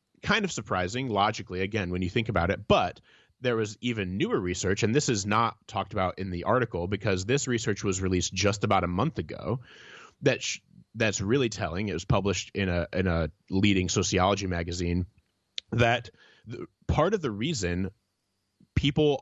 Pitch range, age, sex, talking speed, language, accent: 95-120 Hz, 30-49, male, 180 wpm, English, American